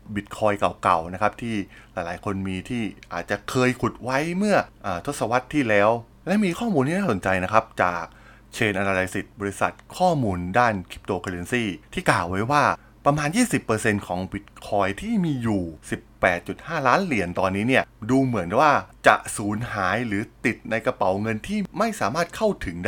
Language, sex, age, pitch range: Thai, male, 20-39, 95-120 Hz